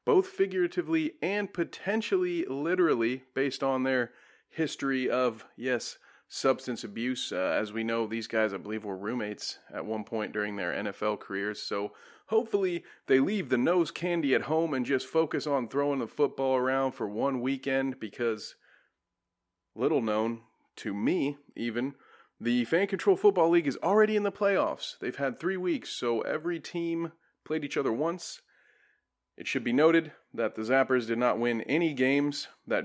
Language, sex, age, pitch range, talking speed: English, male, 30-49, 110-160 Hz, 165 wpm